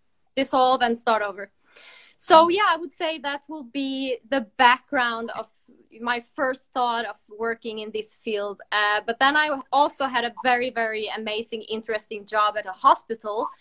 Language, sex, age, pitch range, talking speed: English, female, 20-39, 220-275 Hz, 170 wpm